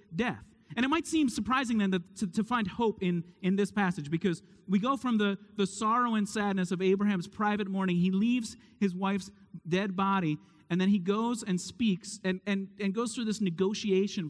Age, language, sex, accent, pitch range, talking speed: 30-49, English, male, American, 145-205 Hz, 200 wpm